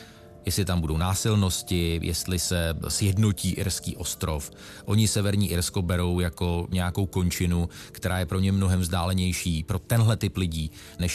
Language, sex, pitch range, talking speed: Czech, male, 85-105 Hz, 145 wpm